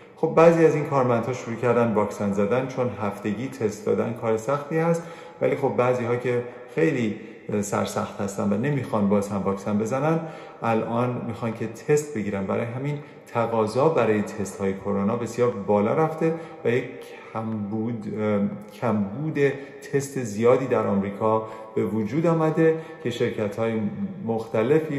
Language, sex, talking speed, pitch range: Persian, male, 140 wpm, 110-140 Hz